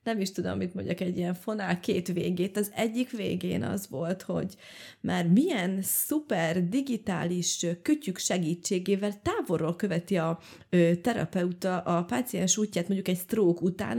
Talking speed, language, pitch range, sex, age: 145 wpm, Hungarian, 180-220 Hz, female, 30-49